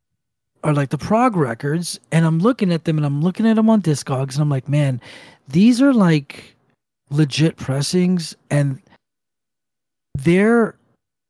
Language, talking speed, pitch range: English, 150 wpm, 145-190 Hz